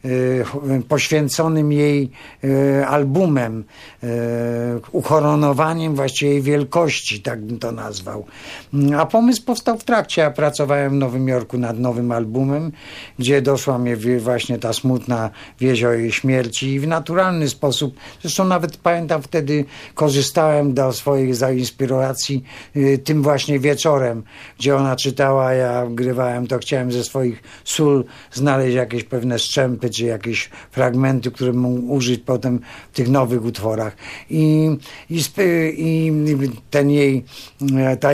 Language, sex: Polish, male